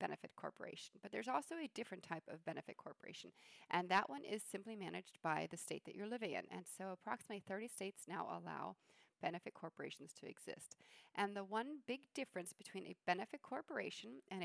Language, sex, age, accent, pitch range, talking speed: English, female, 40-59, American, 175-220 Hz, 185 wpm